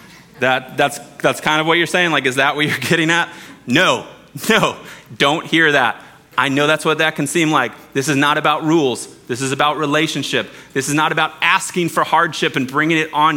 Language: English